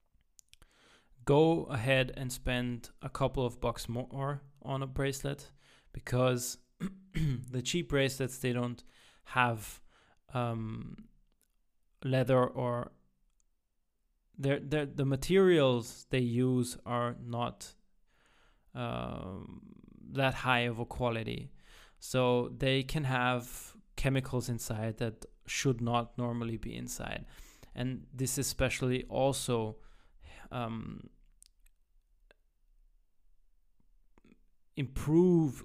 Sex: male